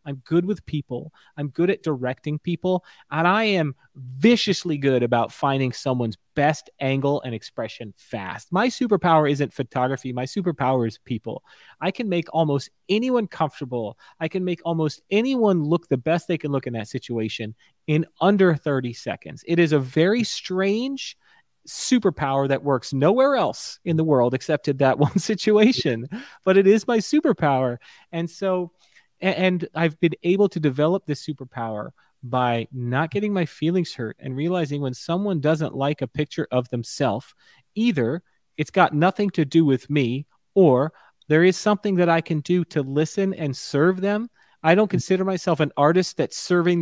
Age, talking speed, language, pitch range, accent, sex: 30-49, 170 wpm, English, 135-185 Hz, American, male